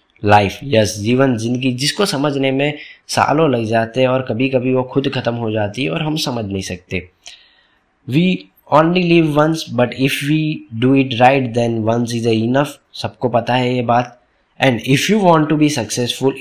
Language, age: Hindi, 20-39